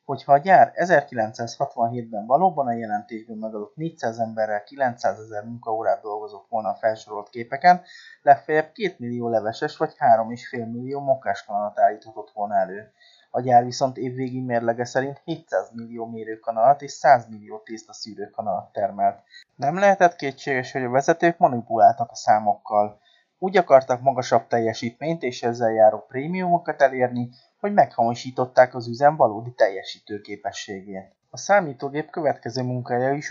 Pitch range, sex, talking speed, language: 115-150 Hz, male, 130 wpm, Hungarian